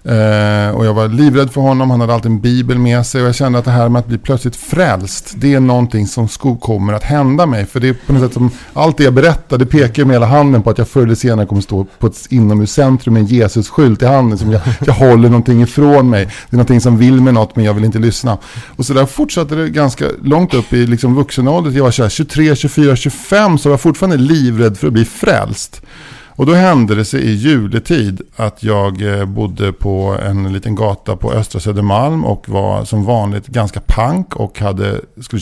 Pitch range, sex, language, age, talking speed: 110-135 Hz, male, English, 50-69, 235 wpm